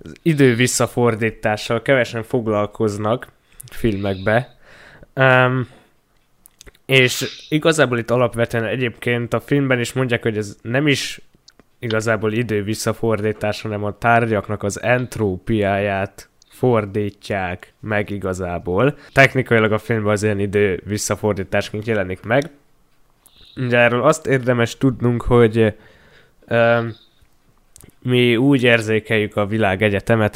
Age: 10-29